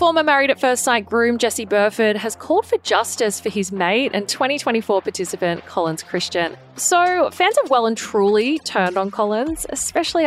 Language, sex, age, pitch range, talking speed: English, female, 20-39, 185-265 Hz, 175 wpm